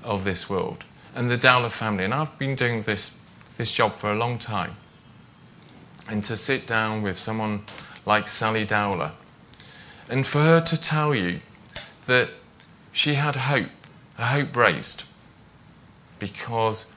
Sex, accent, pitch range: male, British, 100-125 Hz